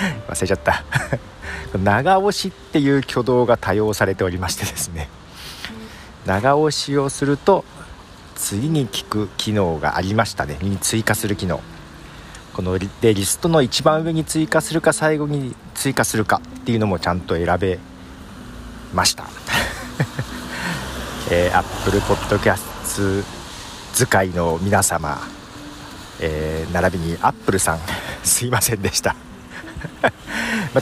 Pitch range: 85-135 Hz